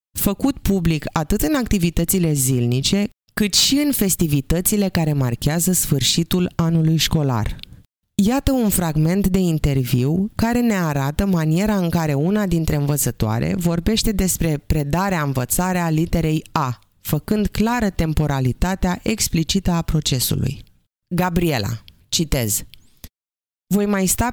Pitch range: 135-190 Hz